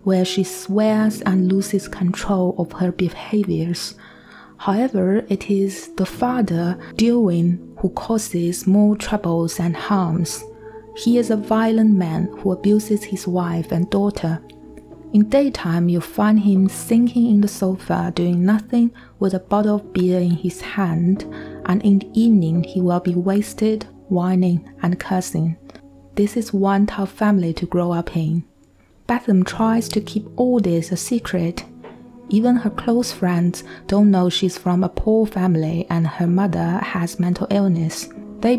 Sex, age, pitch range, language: female, 20-39, 175-210 Hz, Chinese